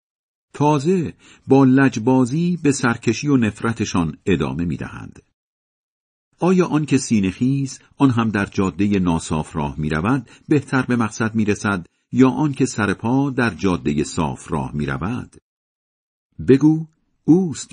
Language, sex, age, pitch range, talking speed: Persian, male, 50-69, 85-135 Hz, 130 wpm